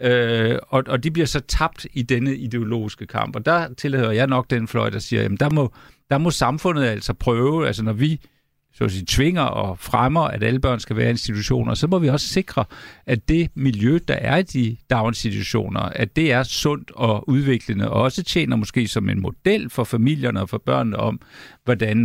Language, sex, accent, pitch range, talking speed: Danish, male, native, 110-140 Hz, 205 wpm